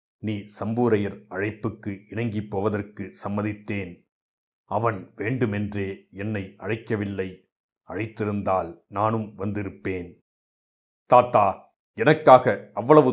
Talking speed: 75 wpm